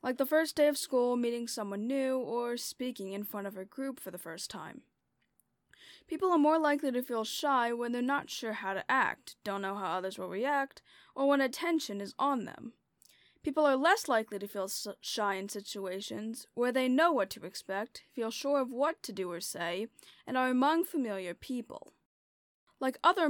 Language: English